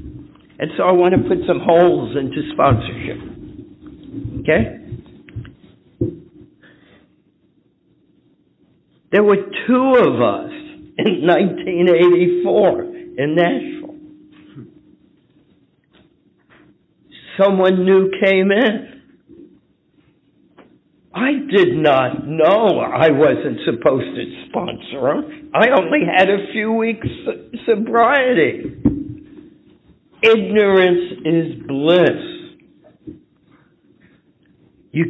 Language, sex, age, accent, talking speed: English, male, 60-79, American, 75 wpm